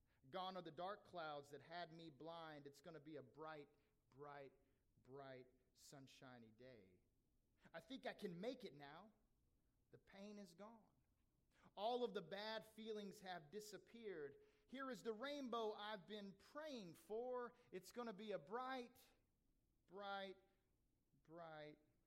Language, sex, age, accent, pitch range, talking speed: English, male, 40-59, American, 150-220 Hz, 145 wpm